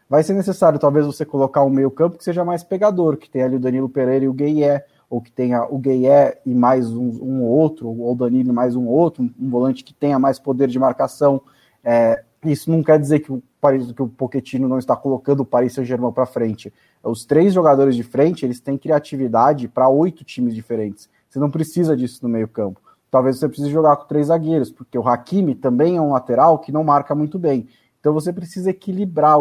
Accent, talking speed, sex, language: Brazilian, 210 wpm, male, Portuguese